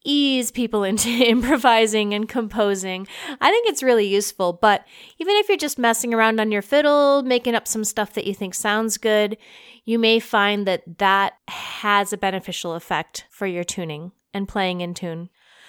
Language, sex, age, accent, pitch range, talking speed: English, female, 30-49, American, 195-240 Hz, 175 wpm